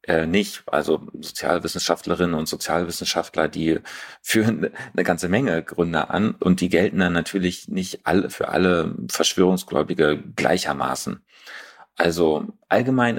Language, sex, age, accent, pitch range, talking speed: German, male, 40-59, German, 85-100 Hz, 120 wpm